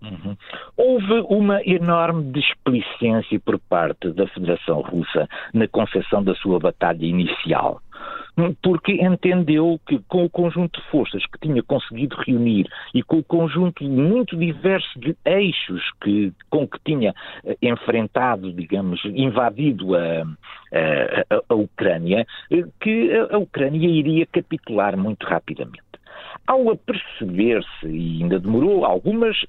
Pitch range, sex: 120-200 Hz, male